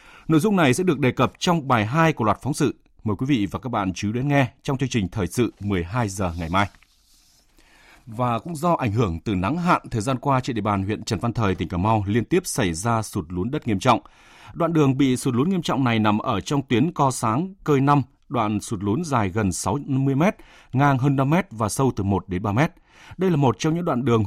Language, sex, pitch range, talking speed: Vietnamese, male, 105-150 Hz, 240 wpm